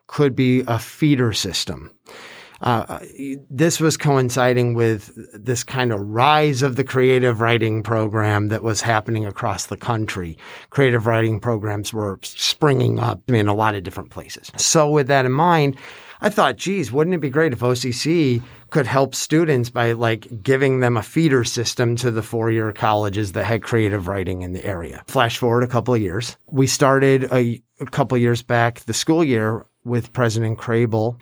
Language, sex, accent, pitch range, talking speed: English, male, American, 110-135 Hz, 175 wpm